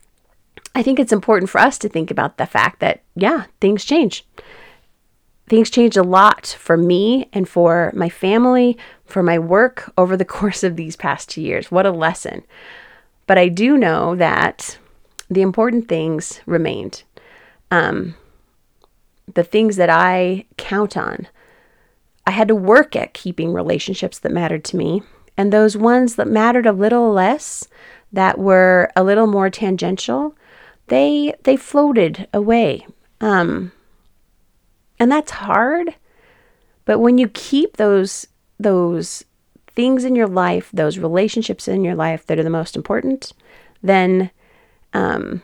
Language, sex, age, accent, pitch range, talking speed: English, female, 30-49, American, 180-230 Hz, 145 wpm